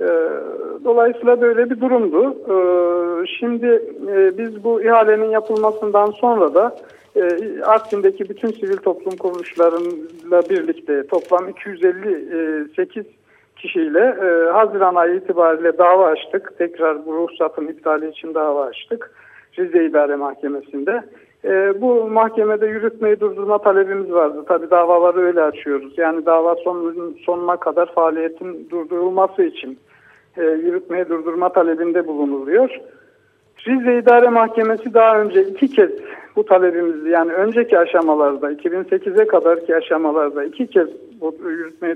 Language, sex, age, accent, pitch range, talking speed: Turkish, male, 60-79, native, 170-235 Hz, 105 wpm